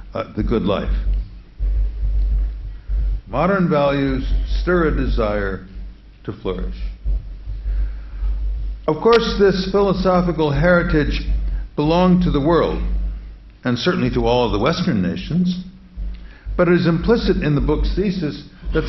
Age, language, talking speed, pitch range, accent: 60-79, English, 120 wpm, 95-160 Hz, American